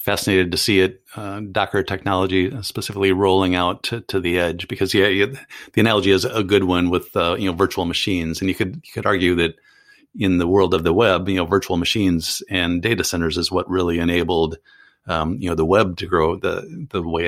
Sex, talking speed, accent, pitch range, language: male, 220 wpm, American, 85-100 Hz, English